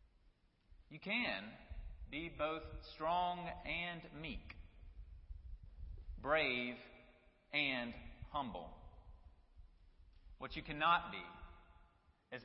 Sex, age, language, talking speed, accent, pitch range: male, 40-59, English, 70 wpm, American, 115-175 Hz